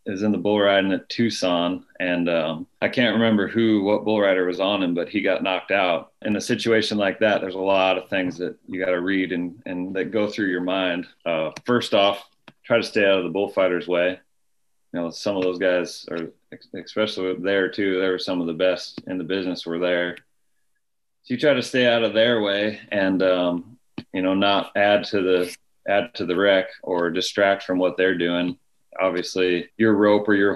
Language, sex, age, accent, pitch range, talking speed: English, male, 30-49, American, 90-105 Hz, 215 wpm